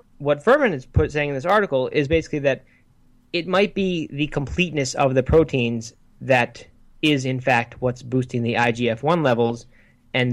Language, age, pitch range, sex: English, 20-39, 120-150 Hz, male